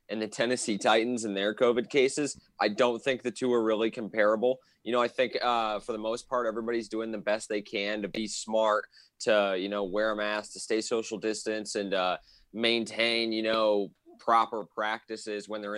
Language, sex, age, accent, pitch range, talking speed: English, male, 20-39, American, 105-125 Hz, 200 wpm